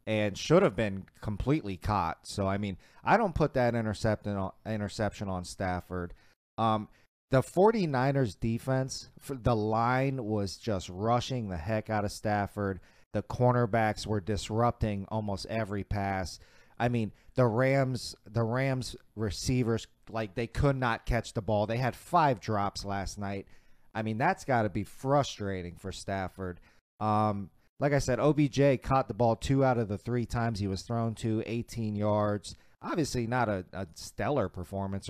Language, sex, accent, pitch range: English, male, American, 100-125 Hz